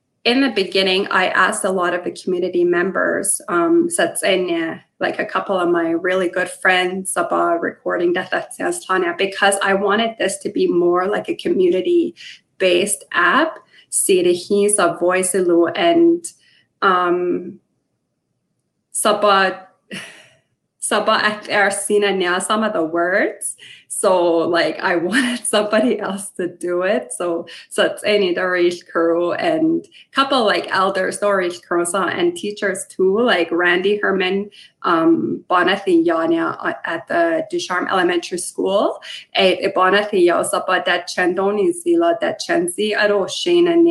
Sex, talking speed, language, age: female, 105 wpm, English, 20-39